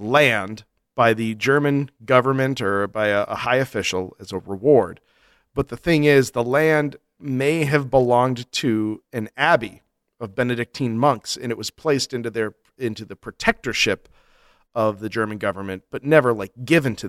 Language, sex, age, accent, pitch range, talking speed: English, male, 40-59, American, 115-155 Hz, 165 wpm